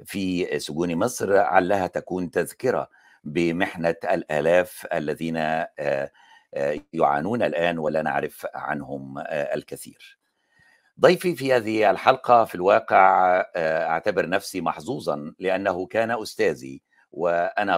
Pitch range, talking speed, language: 85-130 Hz, 95 wpm, Arabic